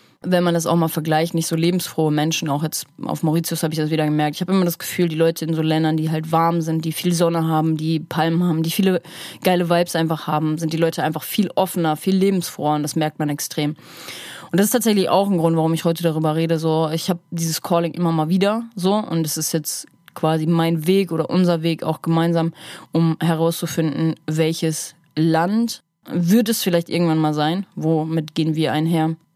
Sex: female